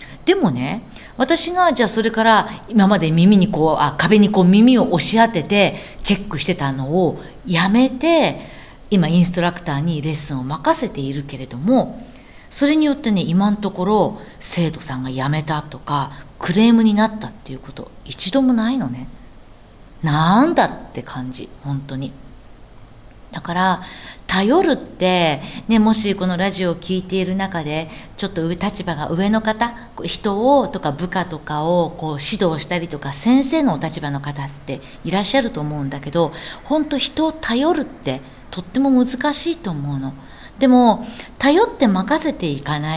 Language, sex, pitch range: Japanese, female, 150-235 Hz